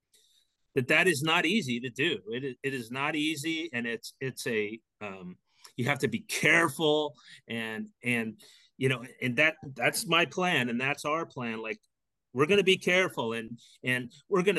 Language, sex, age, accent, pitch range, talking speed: English, male, 30-49, American, 130-170 Hz, 190 wpm